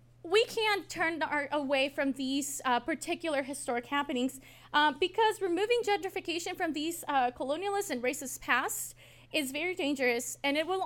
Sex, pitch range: female, 245-330 Hz